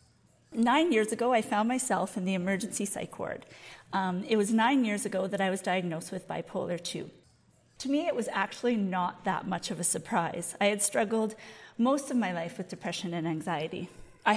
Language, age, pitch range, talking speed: English, 40-59, 195-250 Hz, 195 wpm